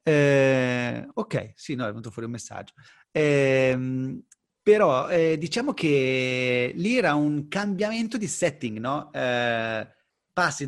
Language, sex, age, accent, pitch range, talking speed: Italian, male, 30-49, native, 120-165 Hz, 130 wpm